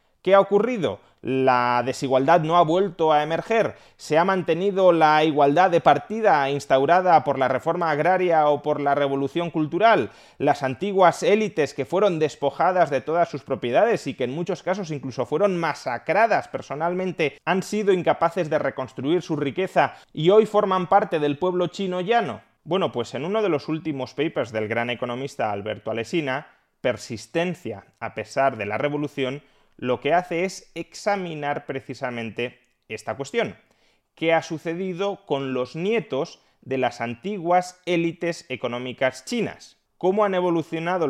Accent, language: Spanish, Spanish